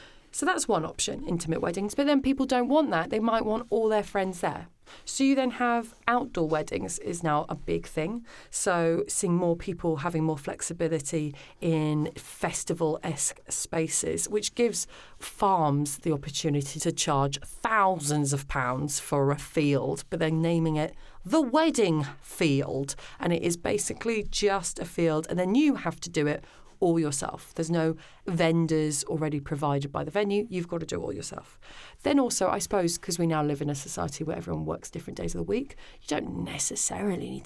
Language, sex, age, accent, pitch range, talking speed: English, female, 30-49, British, 155-220 Hz, 180 wpm